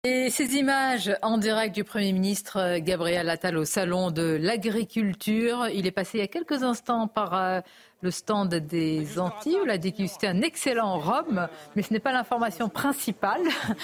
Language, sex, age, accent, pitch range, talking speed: French, female, 40-59, French, 185-235 Hz, 180 wpm